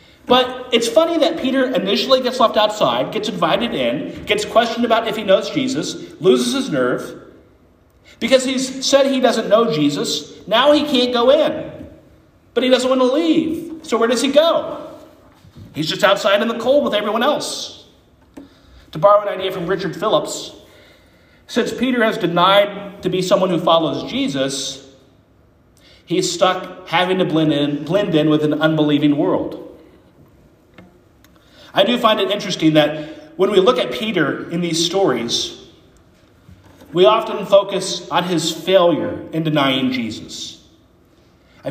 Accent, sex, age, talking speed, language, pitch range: American, male, 40-59, 150 wpm, English, 165-255 Hz